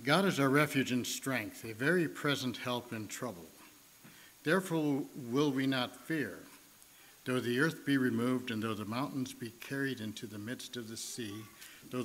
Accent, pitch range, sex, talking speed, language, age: American, 115-140 Hz, male, 175 wpm, English, 60-79